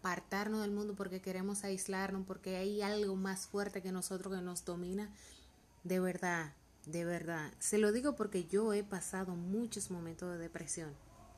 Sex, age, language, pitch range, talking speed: female, 30-49, Spanish, 175-200 Hz, 165 wpm